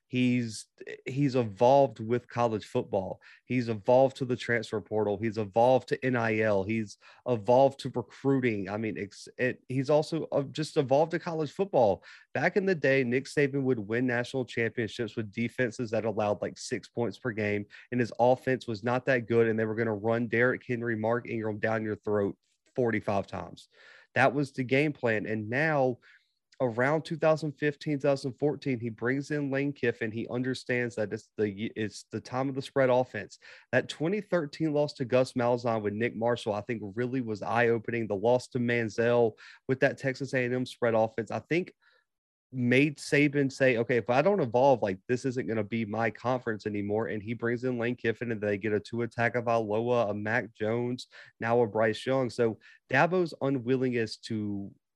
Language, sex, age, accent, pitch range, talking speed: English, male, 30-49, American, 110-135 Hz, 180 wpm